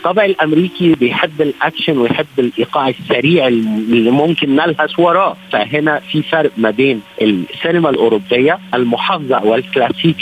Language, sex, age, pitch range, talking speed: Arabic, male, 50-69, 115-165 Hz, 115 wpm